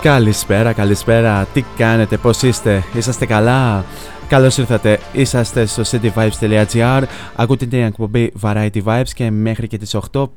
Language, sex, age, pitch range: Greek, male, 20-39, 105-120 Hz